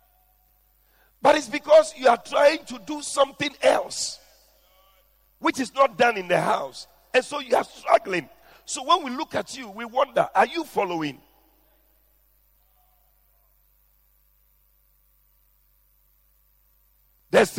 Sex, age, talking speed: male, 50-69, 115 wpm